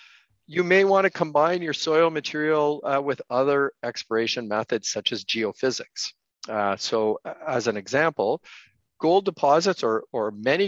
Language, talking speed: English, 145 wpm